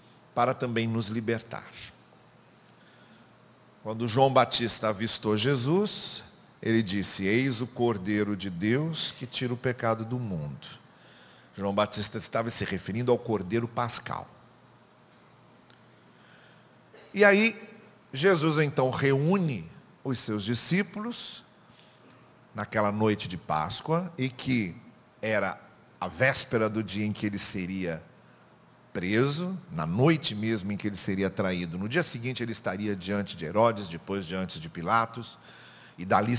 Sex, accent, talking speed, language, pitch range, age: male, Brazilian, 125 wpm, Portuguese, 105-135 Hz, 50-69